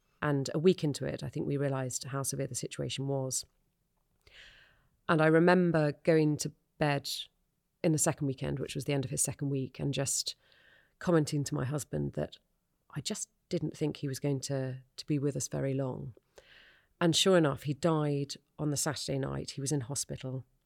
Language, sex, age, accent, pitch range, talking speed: English, female, 30-49, British, 135-155 Hz, 190 wpm